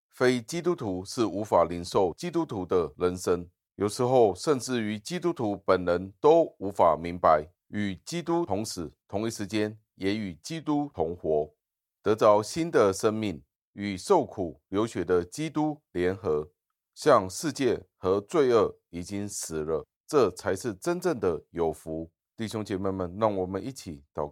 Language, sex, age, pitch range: Chinese, male, 30-49, 80-105 Hz